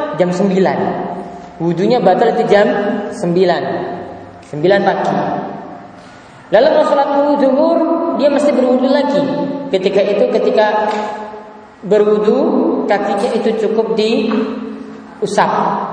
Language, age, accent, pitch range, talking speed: Romanian, 20-39, Indonesian, 195-245 Hz, 95 wpm